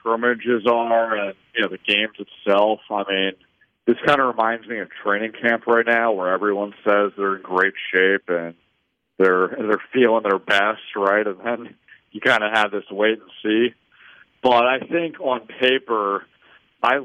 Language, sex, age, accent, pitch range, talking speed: English, male, 40-59, American, 95-115 Hz, 180 wpm